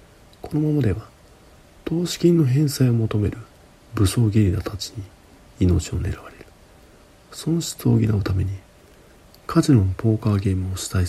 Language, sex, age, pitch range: Japanese, male, 40-59, 90-120 Hz